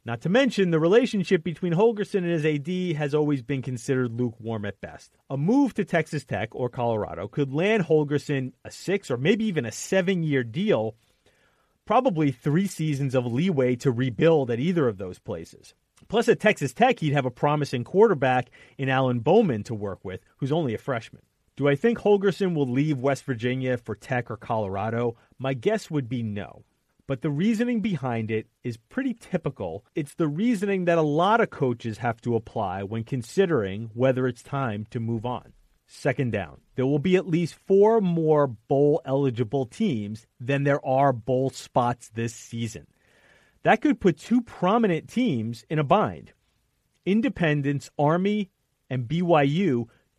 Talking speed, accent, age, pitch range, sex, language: 170 wpm, American, 30-49, 120-180 Hz, male, English